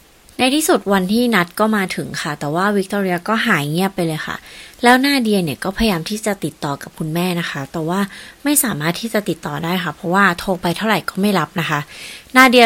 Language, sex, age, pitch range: Thai, female, 30-49, 155-210 Hz